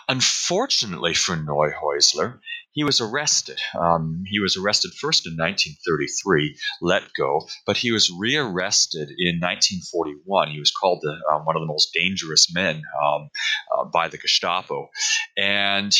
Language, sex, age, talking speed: English, male, 40-59, 145 wpm